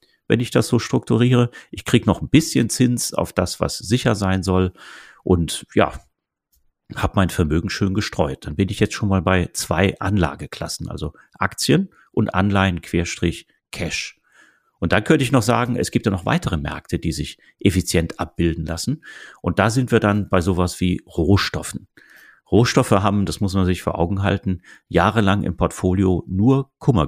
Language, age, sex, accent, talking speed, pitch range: German, 40-59, male, German, 175 wpm, 85-105 Hz